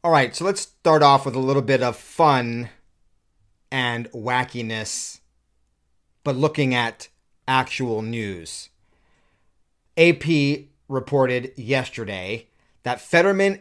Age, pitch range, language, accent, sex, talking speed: 30-49, 115-150 Hz, English, American, male, 105 wpm